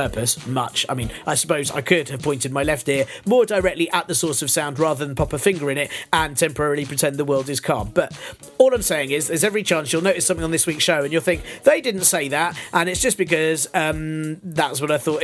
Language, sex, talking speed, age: English, male, 255 wpm, 40-59